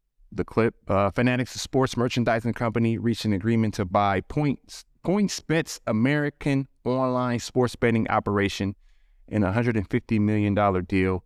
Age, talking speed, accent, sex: 30-49, 140 wpm, American, male